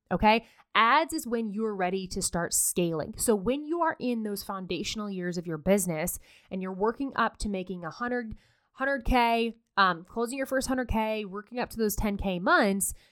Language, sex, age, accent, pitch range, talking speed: English, female, 20-39, American, 180-240 Hz, 180 wpm